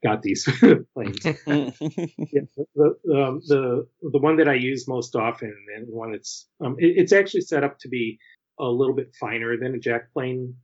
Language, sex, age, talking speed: English, male, 30-49, 190 wpm